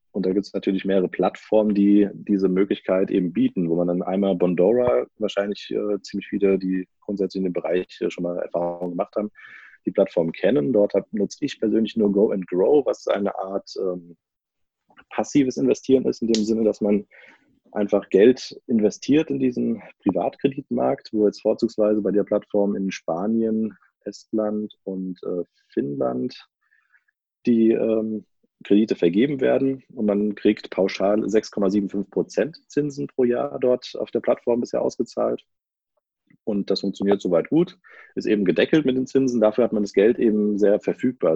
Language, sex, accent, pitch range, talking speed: German, male, German, 95-115 Hz, 165 wpm